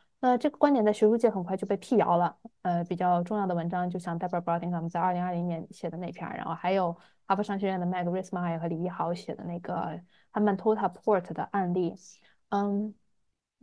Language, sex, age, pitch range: Chinese, female, 20-39, 175-215 Hz